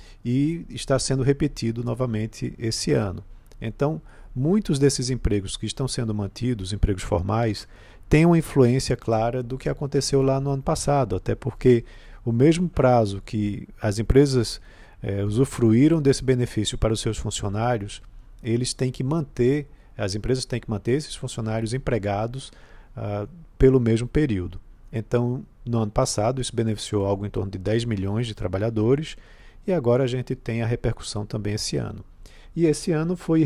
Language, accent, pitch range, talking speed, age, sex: Portuguese, Brazilian, 105-130 Hz, 160 wpm, 50-69, male